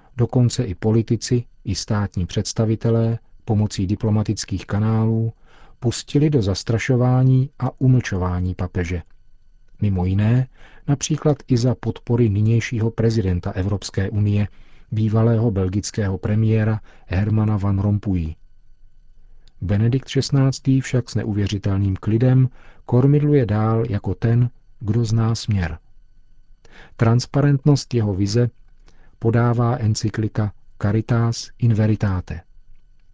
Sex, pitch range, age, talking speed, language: male, 100-120 Hz, 40-59, 95 wpm, Czech